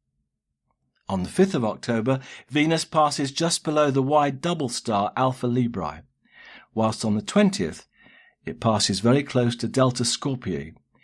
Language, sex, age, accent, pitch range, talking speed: English, male, 50-69, British, 100-145 Hz, 140 wpm